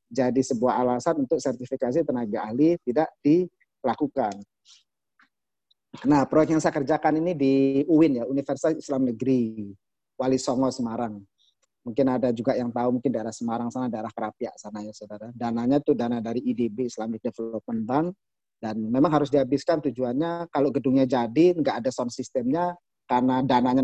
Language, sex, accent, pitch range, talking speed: Indonesian, male, native, 125-150 Hz, 150 wpm